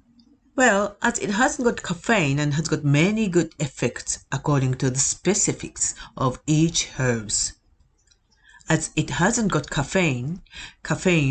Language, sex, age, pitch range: Japanese, female, 40-59, 130-175 Hz